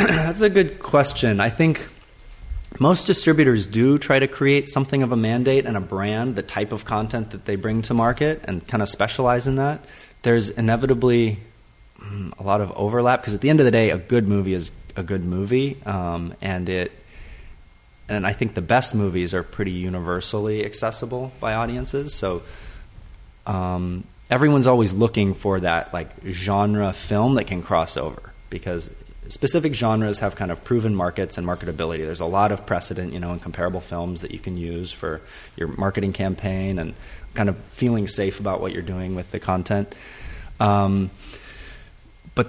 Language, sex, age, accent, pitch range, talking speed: English, male, 30-49, American, 90-120 Hz, 180 wpm